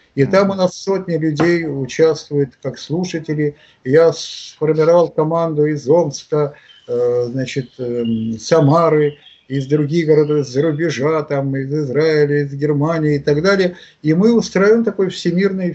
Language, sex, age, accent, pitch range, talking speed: Russian, male, 50-69, native, 140-175 Hz, 135 wpm